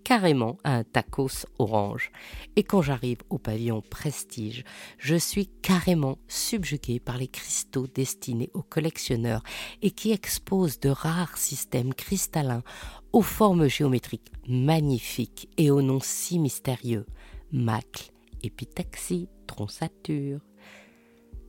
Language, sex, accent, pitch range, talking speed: French, female, French, 120-160 Hz, 110 wpm